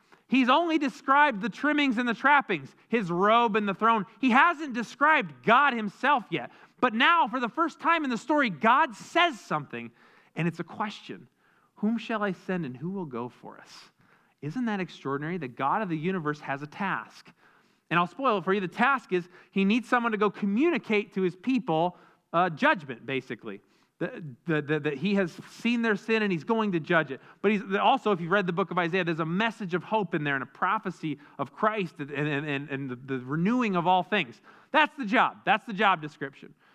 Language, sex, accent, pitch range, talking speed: English, male, American, 170-240 Hz, 205 wpm